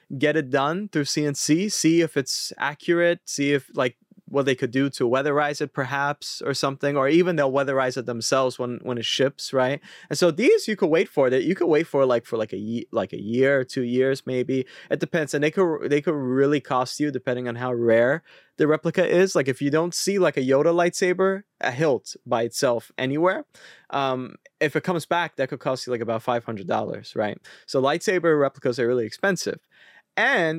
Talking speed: 215 wpm